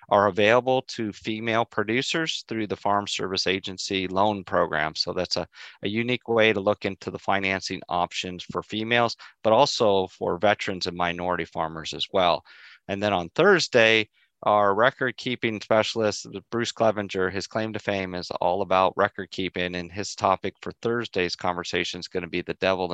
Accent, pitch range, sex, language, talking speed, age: American, 90-105 Hz, male, English, 165 wpm, 30-49